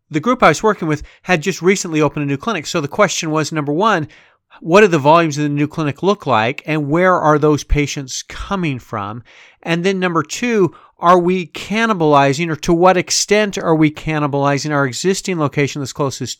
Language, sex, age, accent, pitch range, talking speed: English, male, 40-59, American, 140-180 Hz, 200 wpm